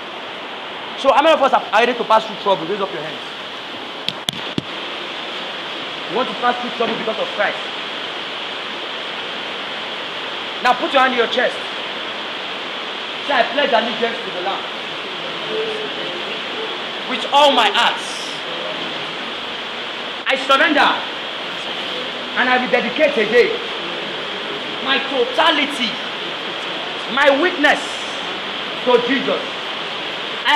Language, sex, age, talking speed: English, male, 40-59, 115 wpm